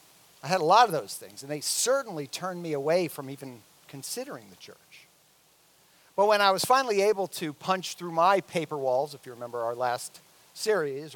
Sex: male